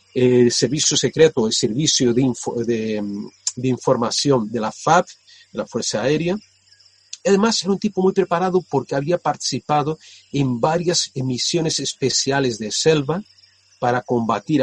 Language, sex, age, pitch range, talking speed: Spanish, male, 40-59, 120-175 Hz, 140 wpm